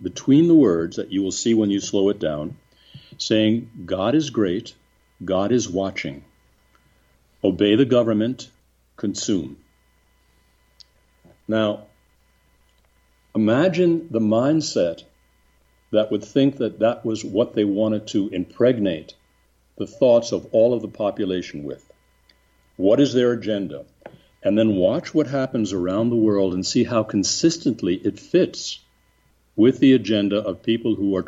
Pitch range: 85-115 Hz